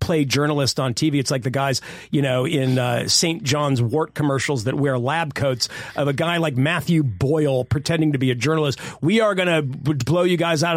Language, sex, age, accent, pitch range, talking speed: English, male, 40-59, American, 130-175 Hz, 215 wpm